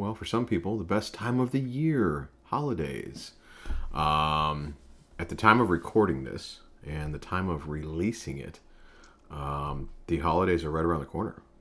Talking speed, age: 165 wpm, 30-49